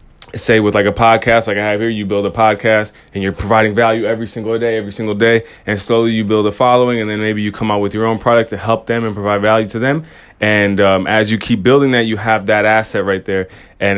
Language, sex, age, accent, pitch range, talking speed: English, male, 20-39, American, 100-115 Hz, 260 wpm